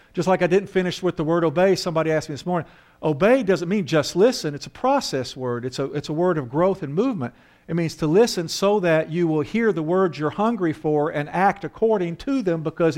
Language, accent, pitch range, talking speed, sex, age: English, American, 130-190 Hz, 240 wpm, male, 50-69